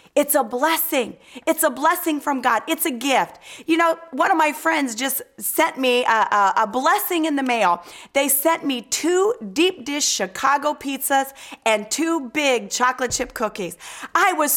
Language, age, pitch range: English, 40-59, 260-310 Hz